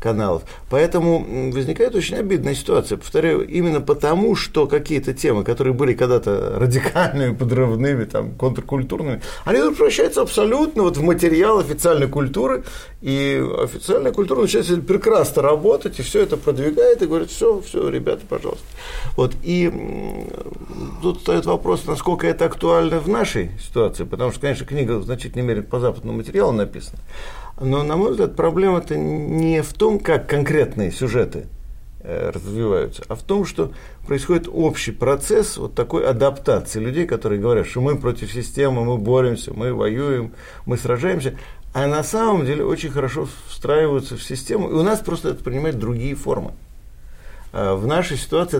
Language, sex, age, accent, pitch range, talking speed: Russian, male, 50-69, native, 125-180 Hz, 145 wpm